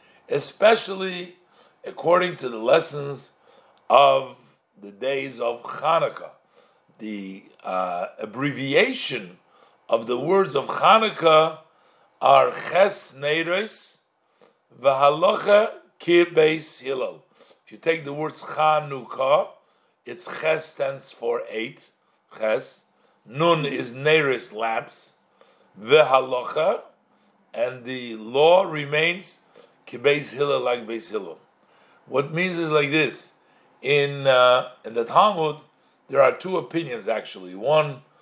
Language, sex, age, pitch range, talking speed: English, male, 50-69, 125-160 Hz, 105 wpm